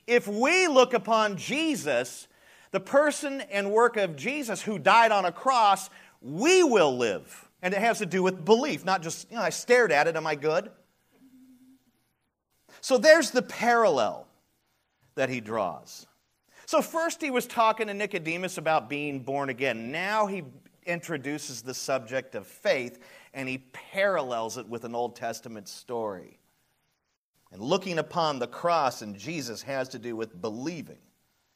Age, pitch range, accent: 40-59, 140-215 Hz, American